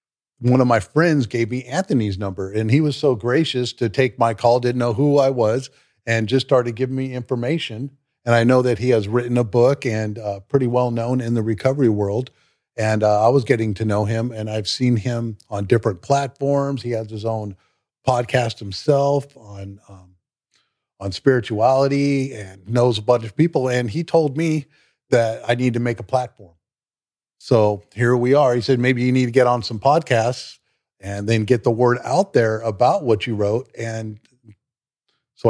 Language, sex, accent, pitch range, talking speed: English, male, American, 110-130 Hz, 195 wpm